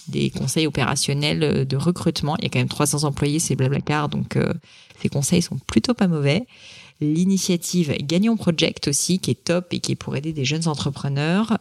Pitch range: 135-165 Hz